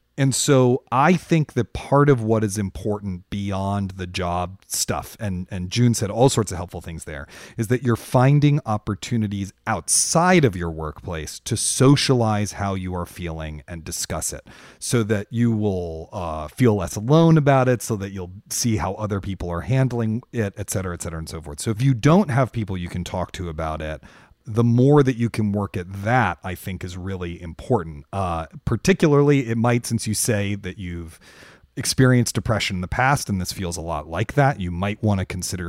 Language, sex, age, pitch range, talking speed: English, male, 30-49, 90-125 Hz, 200 wpm